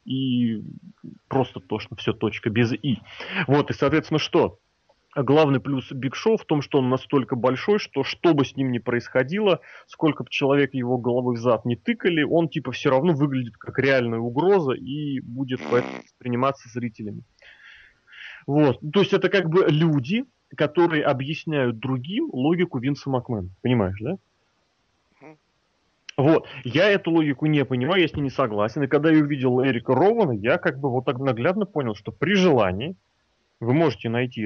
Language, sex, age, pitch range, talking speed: Russian, male, 30-49, 120-155 Hz, 165 wpm